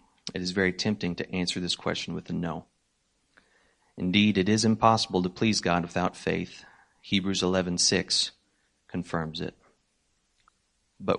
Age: 40-59